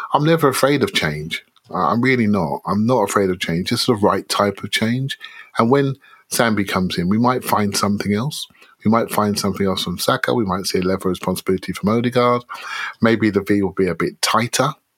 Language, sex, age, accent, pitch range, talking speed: English, male, 30-49, British, 100-145 Hz, 210 wpm